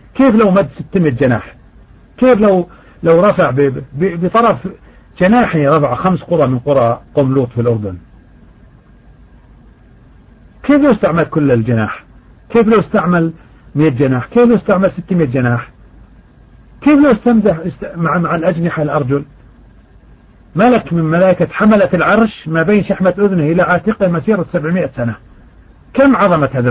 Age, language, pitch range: 50-69, Arabic, 130-195 Hz